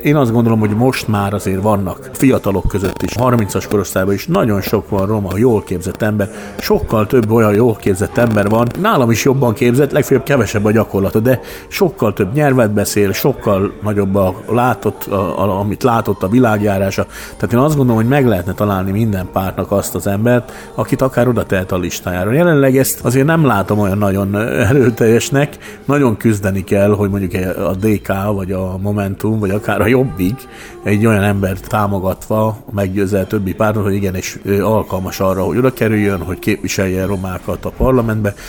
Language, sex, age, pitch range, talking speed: Hungarian, male, 50-69, 95-115 Hz, 175 wpm